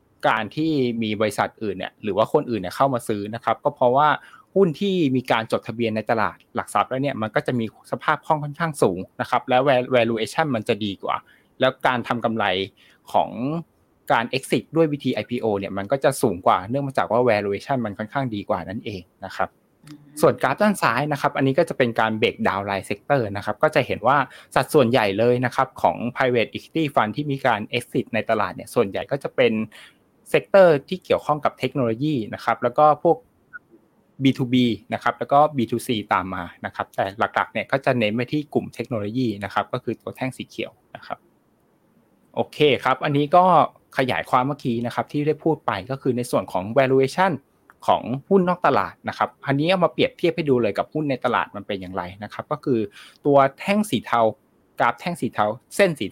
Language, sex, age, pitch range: Thai, male, 20-39, 110-145 Hz